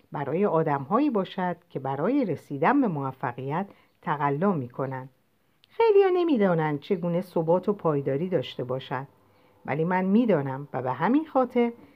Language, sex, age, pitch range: Persian, female, 50-69, 145-220 Hz